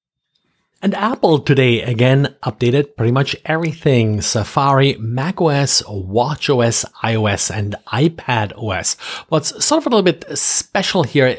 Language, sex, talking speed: English, male, 115 wpm